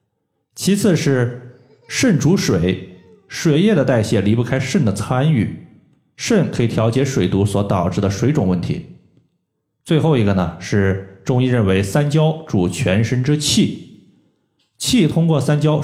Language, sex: Chinese, male